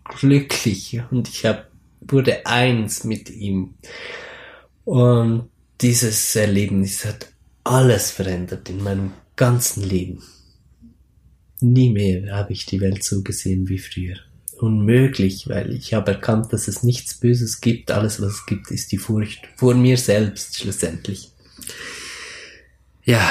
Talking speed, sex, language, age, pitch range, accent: 130 wpm, male, German, 20-39, 100-120 Hz, German